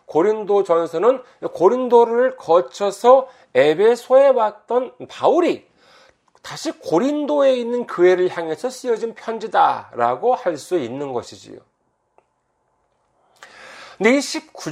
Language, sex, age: Korean, male, 40-59